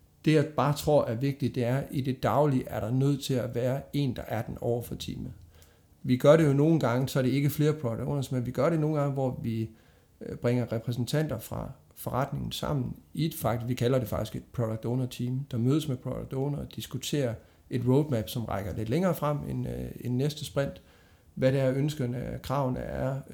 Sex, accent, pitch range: male, native, 115-145 Hz